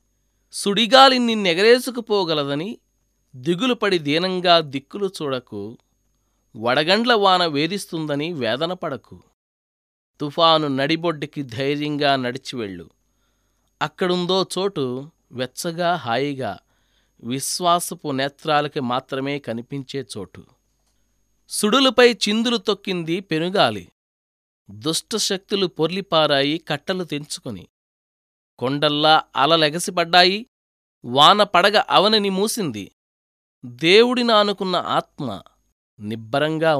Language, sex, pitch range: Telugu, male, 130-190 Hz